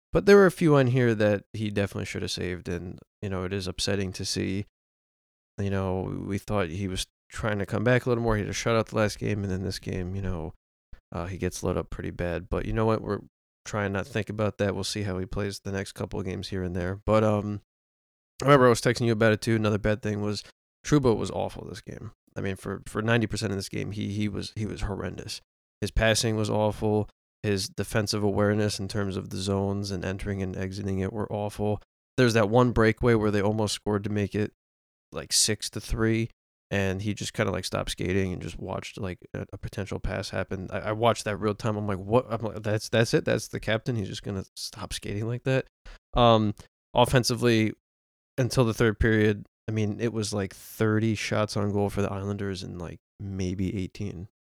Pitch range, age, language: 95-110 Hz, 20-39, English